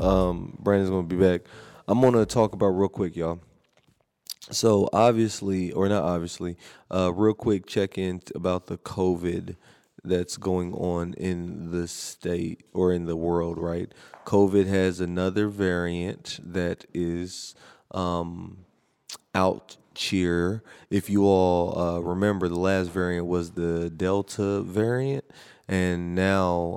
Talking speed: 130 wpm